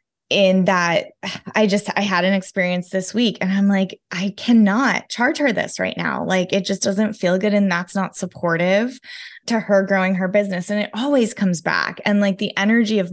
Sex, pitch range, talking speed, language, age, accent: female, 180-220 Hz, 205 wpm, English, 20-39, American